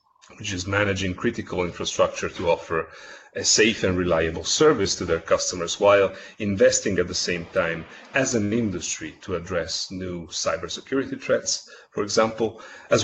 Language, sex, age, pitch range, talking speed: English, male, 40-59, 90-110 Hz, 145 wpm